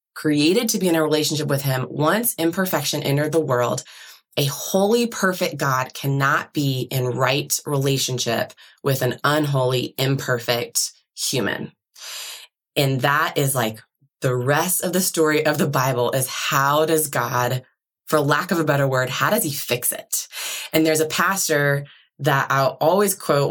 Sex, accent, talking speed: female, American, 160 wpm